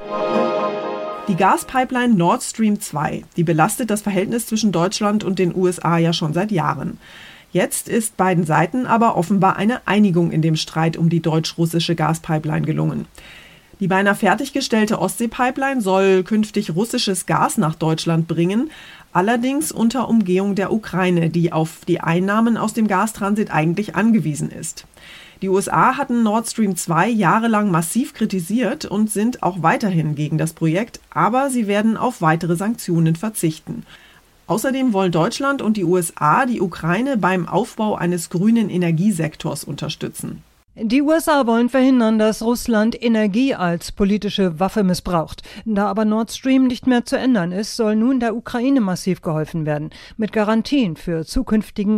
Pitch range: 175-225 Hz